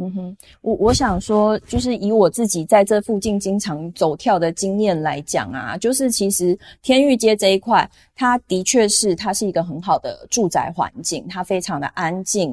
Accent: native